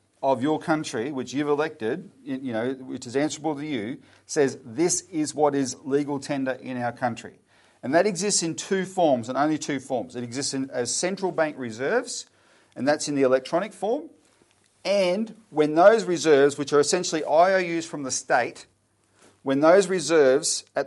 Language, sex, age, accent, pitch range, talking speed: English, male, 40-59, Australian, 130-180 Hz, 175 wpm